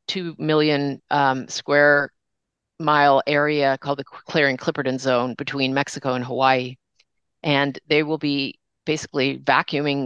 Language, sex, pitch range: English, female, 135-155 Hz